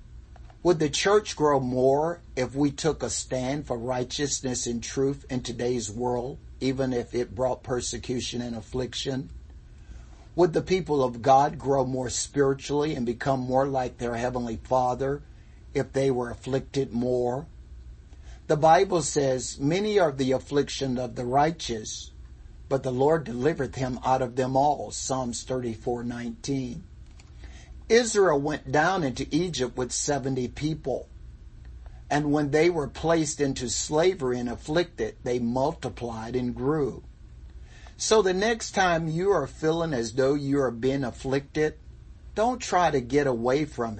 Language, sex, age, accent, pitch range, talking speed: English, male, 50-69, American, 120-145 Hz, 145 wpm